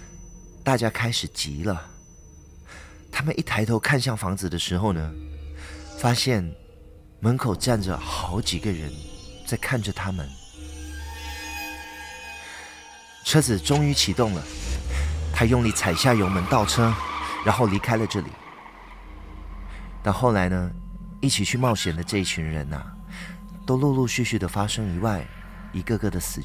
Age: 30-49